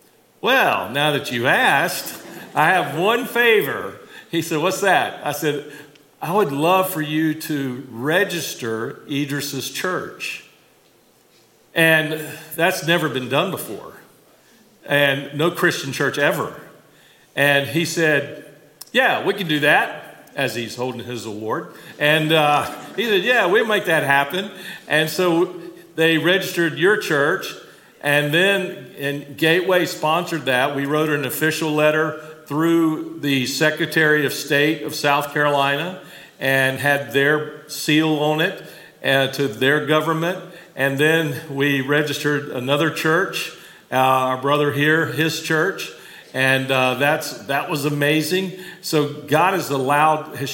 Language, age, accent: English, 50-69, American